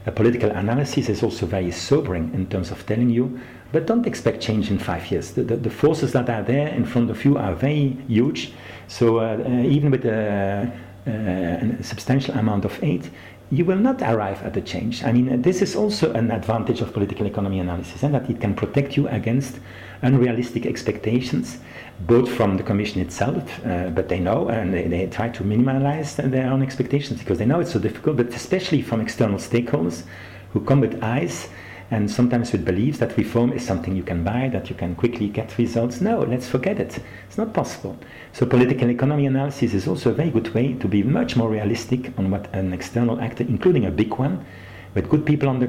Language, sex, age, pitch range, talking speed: English, male, 50-69, 100-125 Hz, 205 wpm